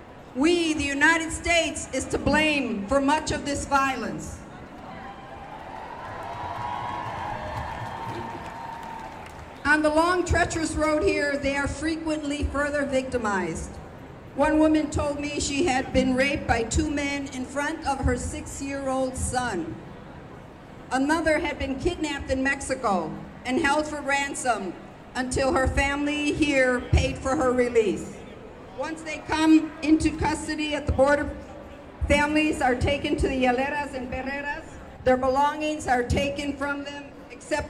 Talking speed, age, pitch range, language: 130 wpm, 50-69, 265-305 Hz, English